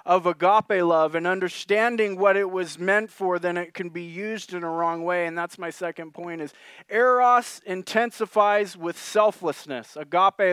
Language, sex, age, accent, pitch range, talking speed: English, male, 30-49, American, 165-205 Hz, 170 wpm